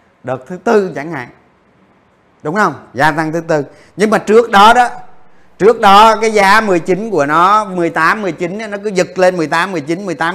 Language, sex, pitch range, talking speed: Vietnamese, male, 135-195 Hz, 185 wpm